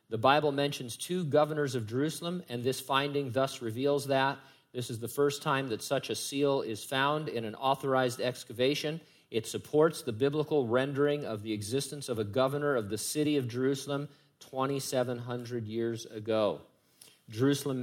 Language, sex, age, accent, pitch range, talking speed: English, male, 50-69, American, 115-145 Hz, 160 wpm